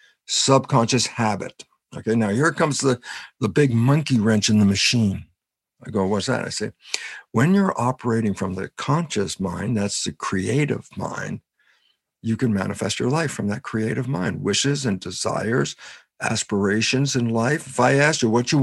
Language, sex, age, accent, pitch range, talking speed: English, male, 60-79, American, 105-135 Hz, 170 wpm